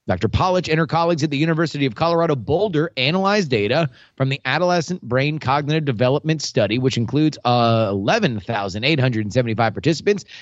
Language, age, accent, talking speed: English, 30-49, American, 145 wpm